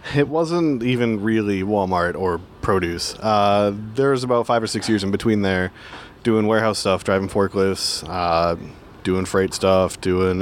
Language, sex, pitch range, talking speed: English, male, 100-115 Hz, 160 wpm